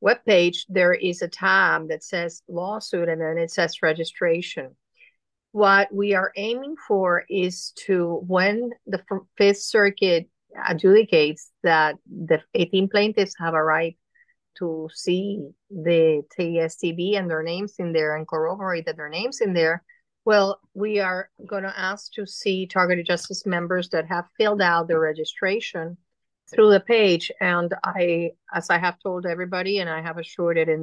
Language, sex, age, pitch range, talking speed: English, female, 50-69, 170-200 Hz, 155 wpm